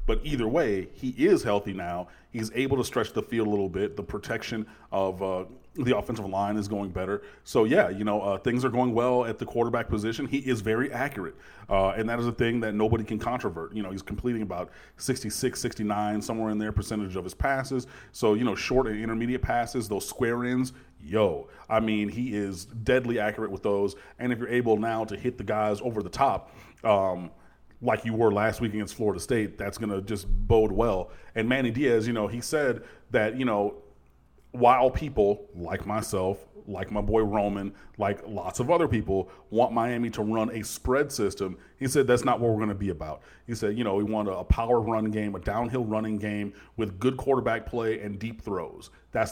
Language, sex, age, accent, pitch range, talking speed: English, male, 30-49, American, 100-120 Hz, 215 wpm